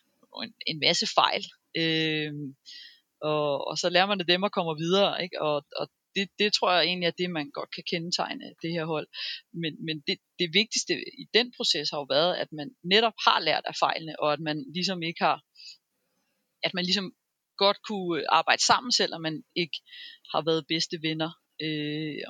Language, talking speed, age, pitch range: Danish, 195 wpm, 30-49, 155-200 Hz